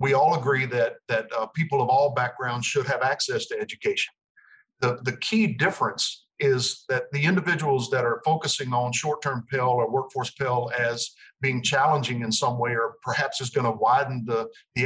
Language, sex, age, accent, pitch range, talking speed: English, male, 50-69, American, 130-175 Hz, 180 wpm